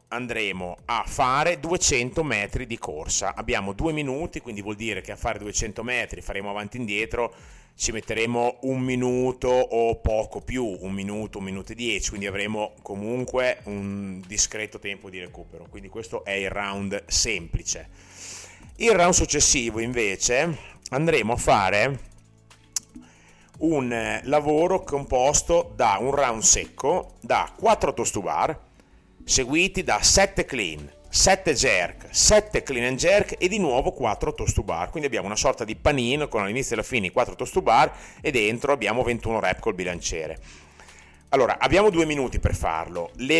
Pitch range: 100-130 Hz